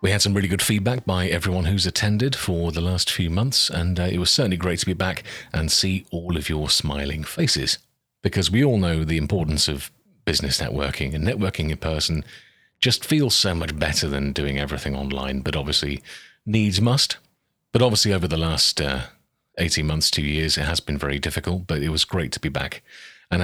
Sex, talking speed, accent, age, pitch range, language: male, 205 wpm, British, 40-59, 75-95 Hz, English